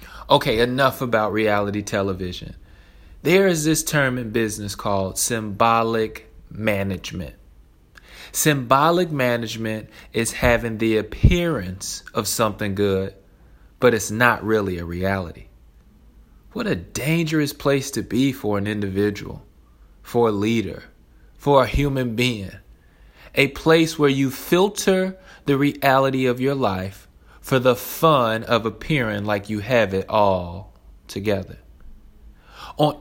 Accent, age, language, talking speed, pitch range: American, 30-49, English, 120 wpm, 95-135 Hz